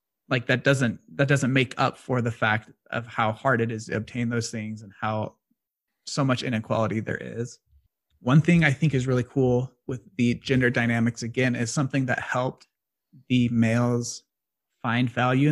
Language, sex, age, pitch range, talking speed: English, male, 30-49, 115-130 Hz, 180 wpm